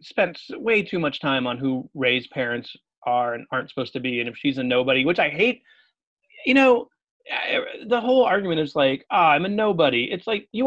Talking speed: 220 wpm